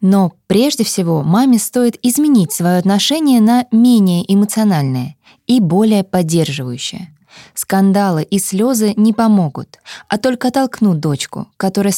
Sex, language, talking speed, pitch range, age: female, Russian, 120 wpm, 175-225 Hz, 20-39